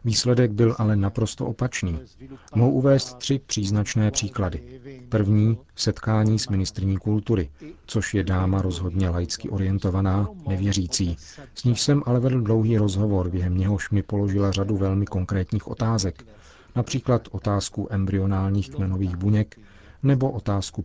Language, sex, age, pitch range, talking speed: Czech, male, 40-59, 95-115 Hz, 125 wpm